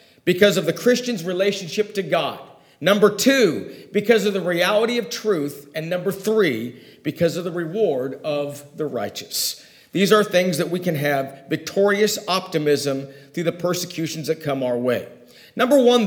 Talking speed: 160 wpm